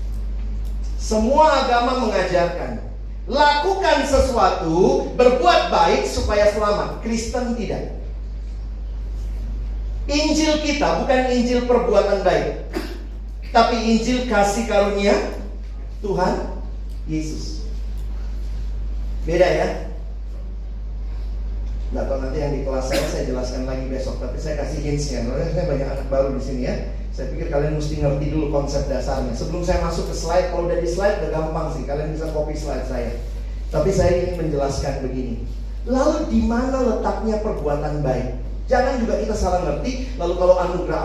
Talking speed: 135 wpm